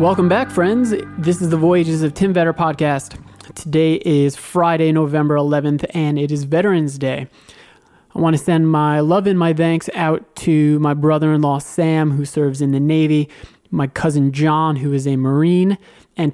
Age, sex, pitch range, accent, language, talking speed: 20-39, male, 145-170 Hz, American, English, 175 wpm